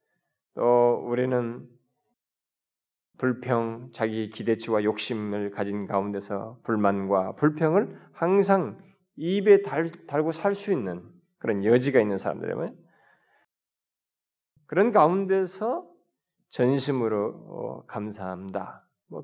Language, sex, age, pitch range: Korean, male, 20-39, 115-185 Hz